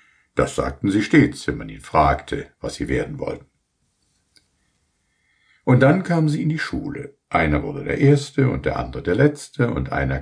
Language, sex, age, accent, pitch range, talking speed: German, male, 60-79, German, 90-140 Hz, 175 wpm